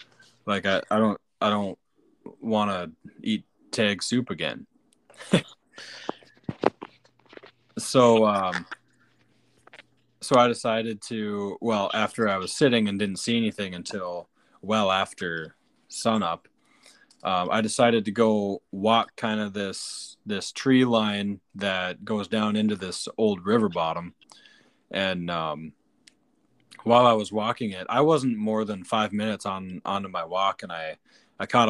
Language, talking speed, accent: English, 135 wpm, American